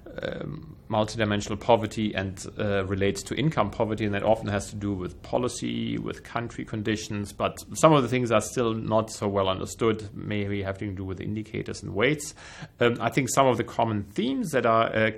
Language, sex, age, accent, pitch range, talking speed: English, male, 40-59, German, 100-115 Hz, 200 wpm